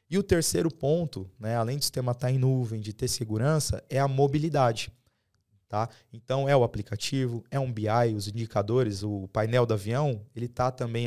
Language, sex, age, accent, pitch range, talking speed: Portuguese, male, 20-39, Brazilian, 105-130 Hz, 180 wpm